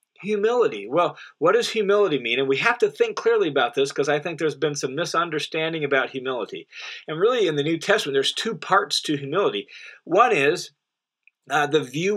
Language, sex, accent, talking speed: English, male, American, 190 wpm